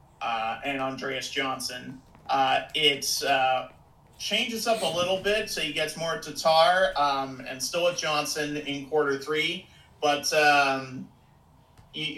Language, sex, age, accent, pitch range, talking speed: English, male, 40-59, American, 145-185 Hz, 145 wpm